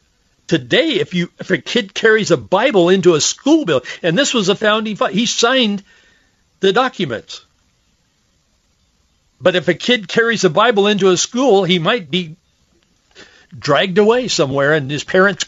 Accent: American